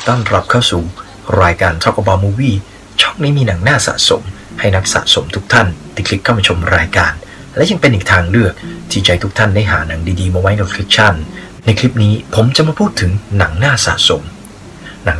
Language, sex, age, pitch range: Thai, male, 30-49, 90-115 Hz